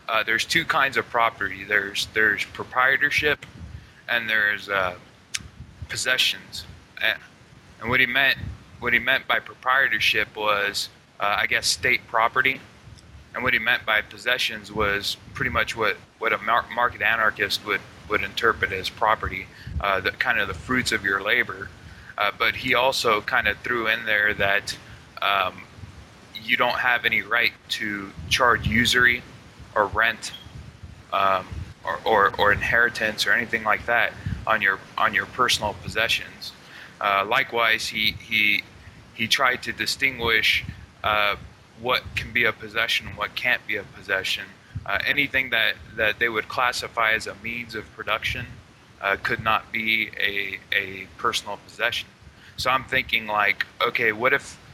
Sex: male